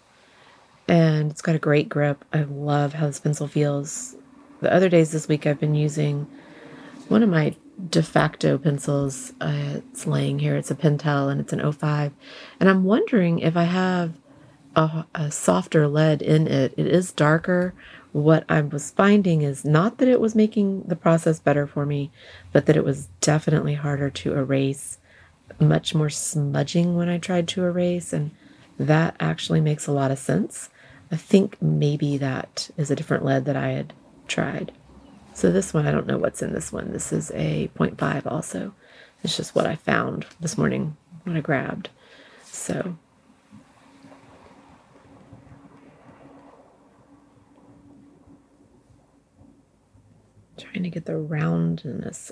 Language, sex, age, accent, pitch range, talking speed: English, female, 30-49, American, 140-170 Hz, 155 wpm